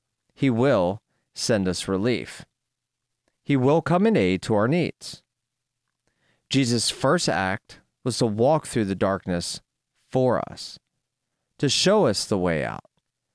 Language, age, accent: English, 30-49, American